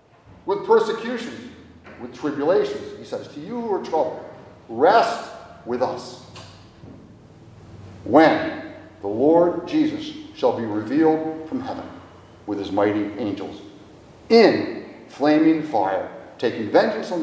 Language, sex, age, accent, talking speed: English, male, 50-69, American, 115 wpm